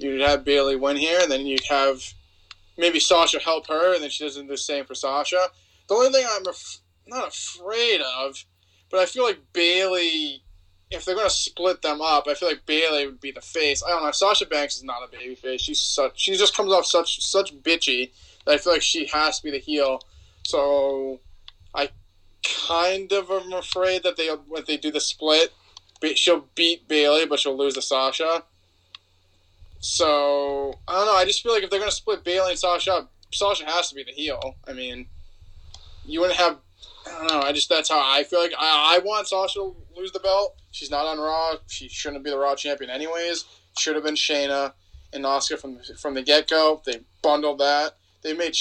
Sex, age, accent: male, 20-39, American